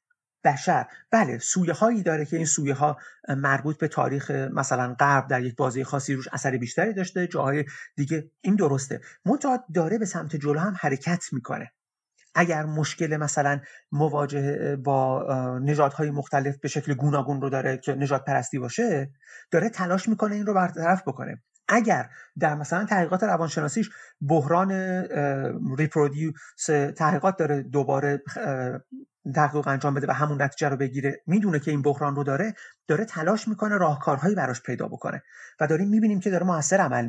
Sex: male